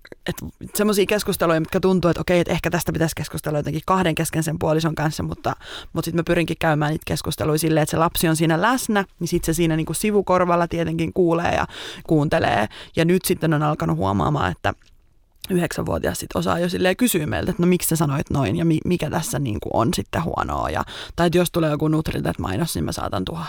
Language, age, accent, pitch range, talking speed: Finnish, 20-39, native, 155-190 Hz, 205 wpm